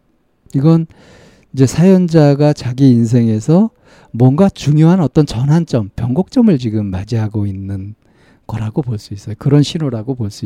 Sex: male